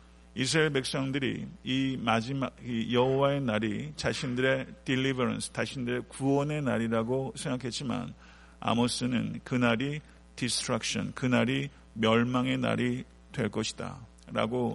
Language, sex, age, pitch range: Korean, male, 50-69, 105-130 Hz